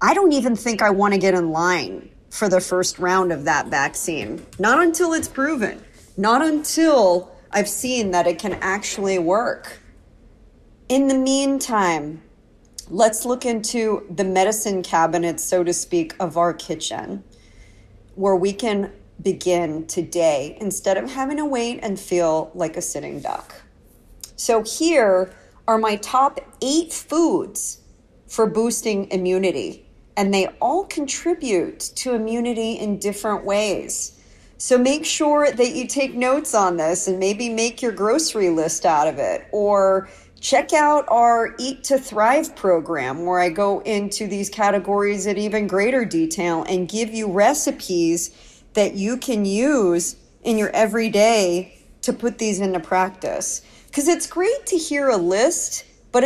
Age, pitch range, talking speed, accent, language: 40-59, 185-255 Hz, 150 wpm, American, English